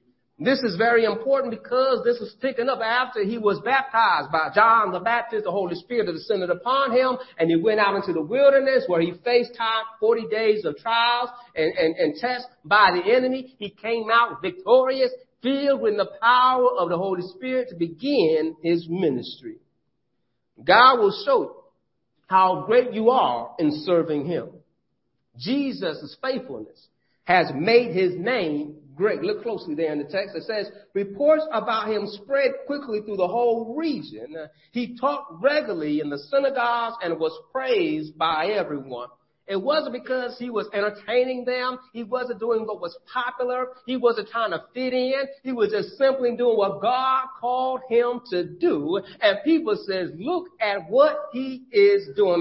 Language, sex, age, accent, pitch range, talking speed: English, male, 50-69, American, 195-265 Hz, 170 wpm